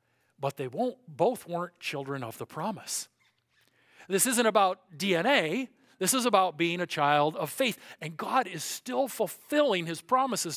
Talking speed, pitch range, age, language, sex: 160 wpm, 145-240 Hz, 50-69, English, male